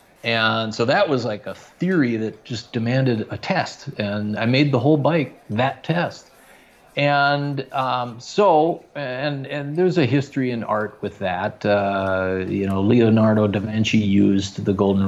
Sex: male